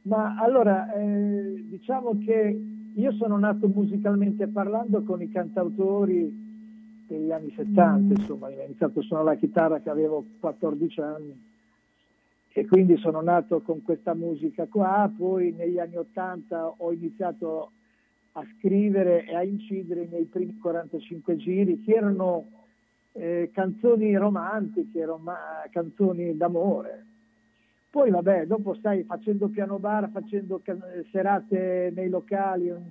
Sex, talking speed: male, 130 wpm